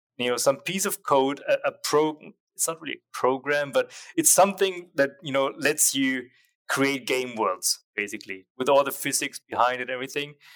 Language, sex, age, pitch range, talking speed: English, male, 30-49, 120-155 Hz, 190 wpm